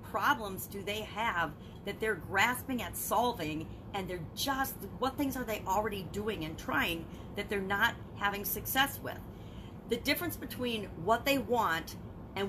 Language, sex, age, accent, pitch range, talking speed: English, female, 40-59, American, 195-250 Hz, 160 wpm